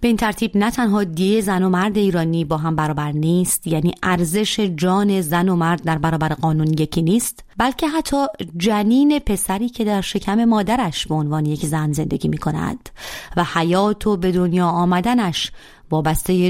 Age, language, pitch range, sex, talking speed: 30-49, Persian, 160-205 Hz, female, 175 wpm